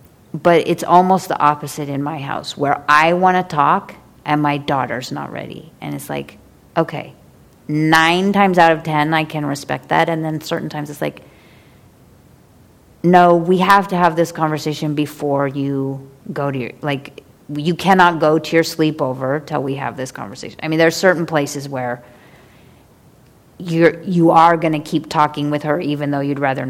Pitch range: 140-170 Hz